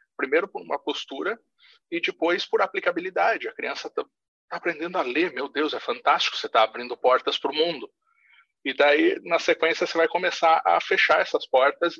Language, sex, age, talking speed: Portuguese, male, 40-59, 175 wpm